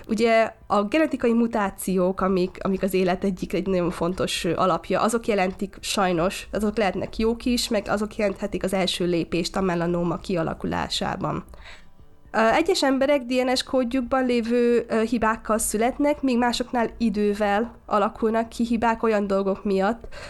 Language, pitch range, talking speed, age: Hungarian, 185-225 Hz, 135 wpm, 20-39